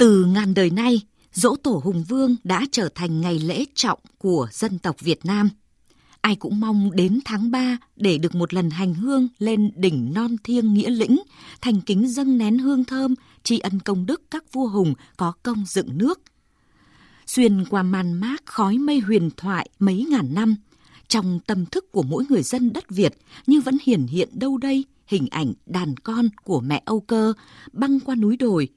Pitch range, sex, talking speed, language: 190-250 Hz, female, 190 wpm, Vietnamese